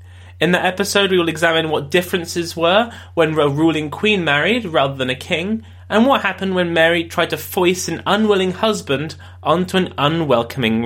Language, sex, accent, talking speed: English, male, British, 175 wpm